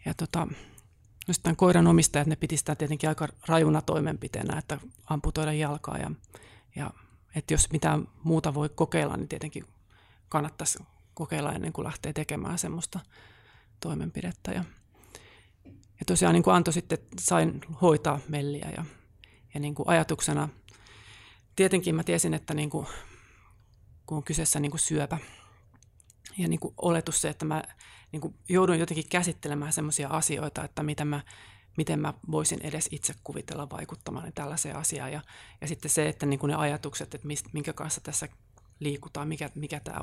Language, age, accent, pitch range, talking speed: Finnish, 30-49, native, 110-155 Hz, 150 wpm